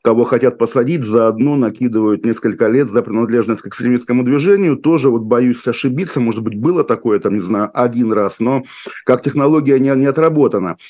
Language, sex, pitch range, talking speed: Russian, male, 110-130 Hz, 170 wpm